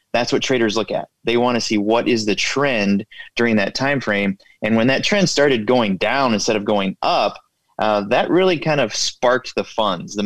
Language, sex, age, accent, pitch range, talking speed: English, male, 30-49, American, 105-120 Hz, 215 wpm